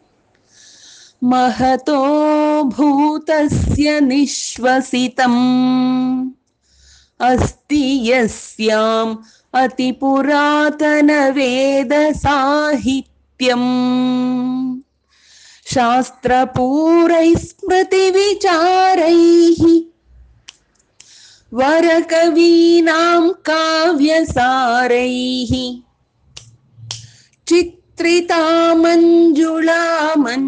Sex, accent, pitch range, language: female, Indian, 200-280 Hz, English